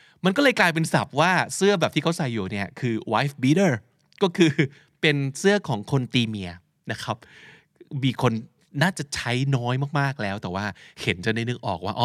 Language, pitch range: Thai, 105-155 Hz